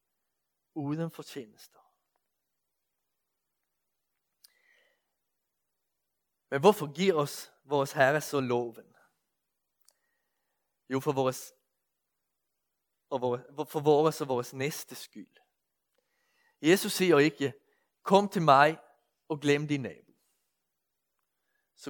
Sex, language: male, Danish